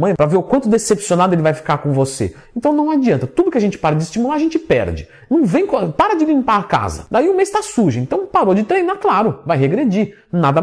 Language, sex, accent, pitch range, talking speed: Portuguese, male, Brazilian, 155-245 Hz, 245 wpm